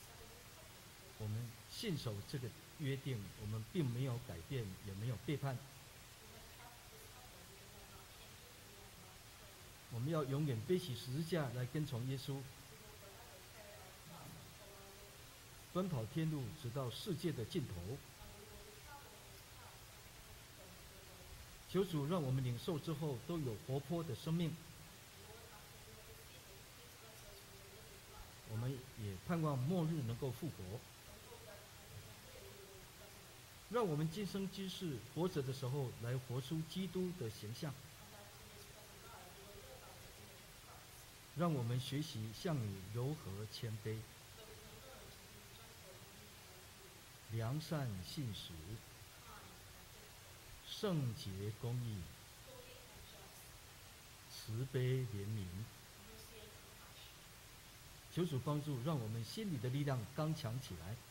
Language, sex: English, male